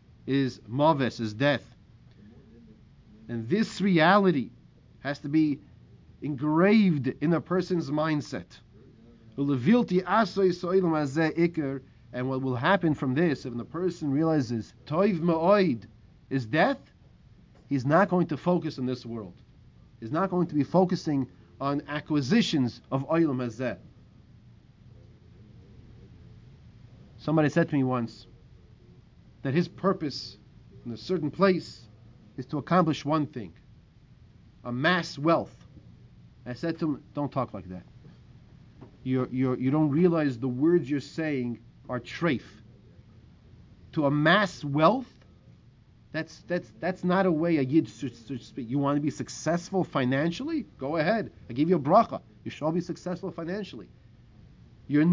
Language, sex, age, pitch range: English, male, 30-49, 120-170 Hz